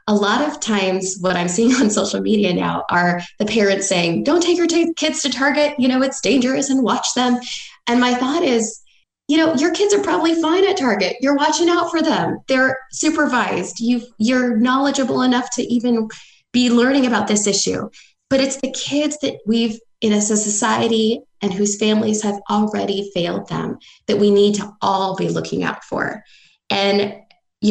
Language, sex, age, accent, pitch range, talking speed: English, female, 10-29, American, 200-255 Hz, 190 wpm